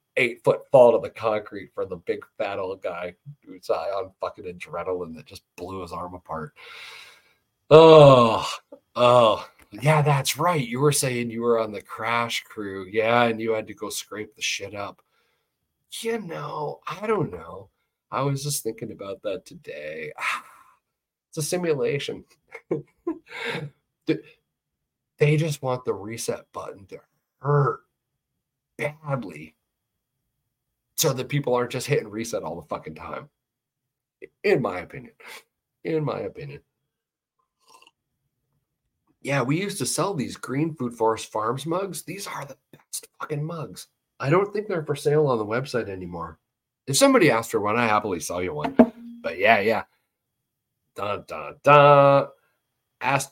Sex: male